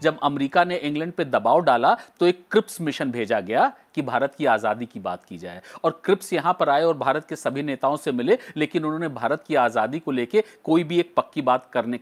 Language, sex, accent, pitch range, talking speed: English, male, Indian, 125-180 Hz, 230 wpm